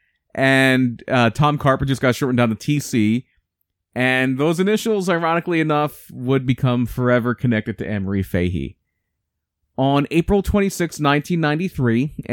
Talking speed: 125 wpm